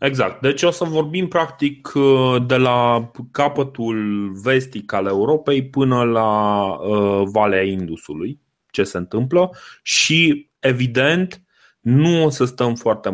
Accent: native